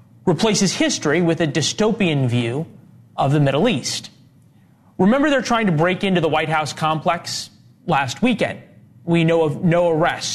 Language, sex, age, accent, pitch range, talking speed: English, male, 30-49, American, 130-170 Hz, 155 wpm